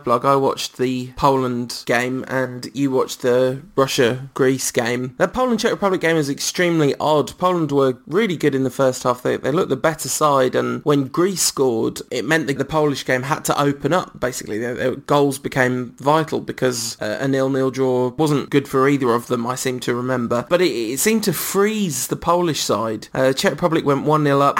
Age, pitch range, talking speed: 20-39, 130-160 Hz, 205 wpm